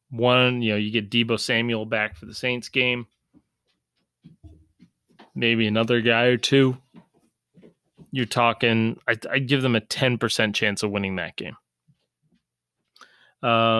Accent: American